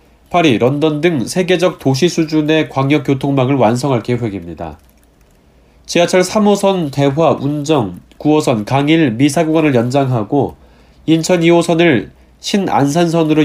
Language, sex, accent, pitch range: Korean, male, native, 125-165 Hz